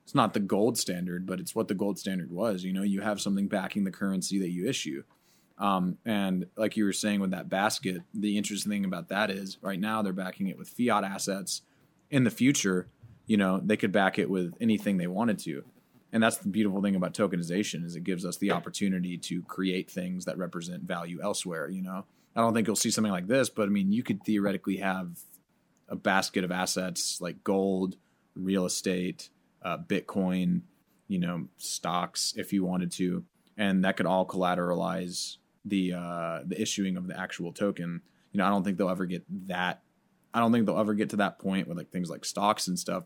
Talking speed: 210 wpm